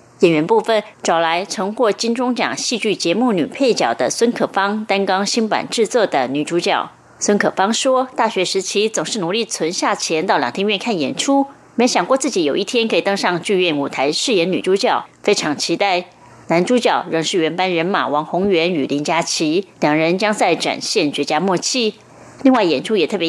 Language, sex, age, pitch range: German, female, 30-49, 170-235 Hz